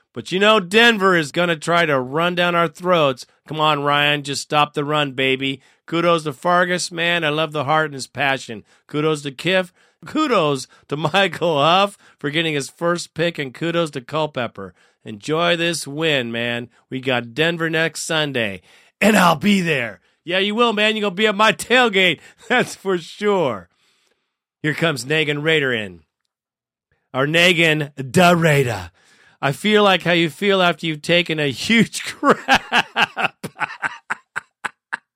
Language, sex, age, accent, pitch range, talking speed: English, male, 40-59, American, 145-185 Hz, 165 wpm